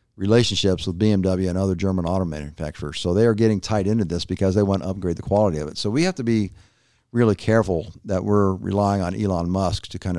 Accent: American